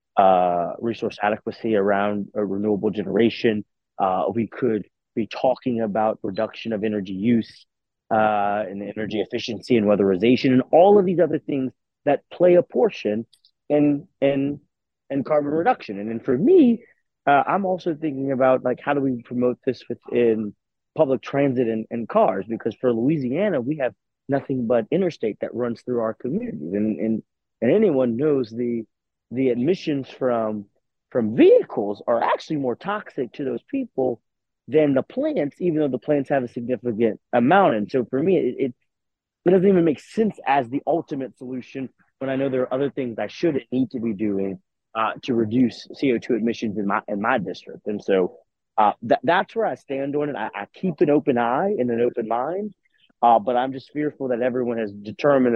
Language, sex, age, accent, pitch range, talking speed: English, male, 30-49, American, 110-140 Hz, 180 wpm